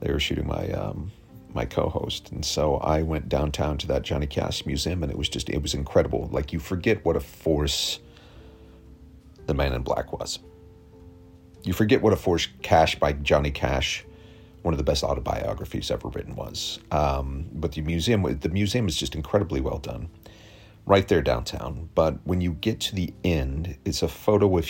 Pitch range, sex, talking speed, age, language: 75-95 Hz, male, 185 wpm, 40-59, English